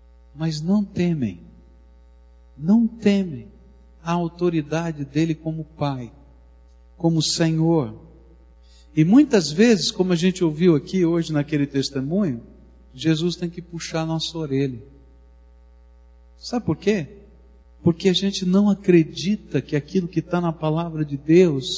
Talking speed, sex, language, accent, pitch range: 125 wpm, male, Portuguese, Brazilian, 115-180 Hz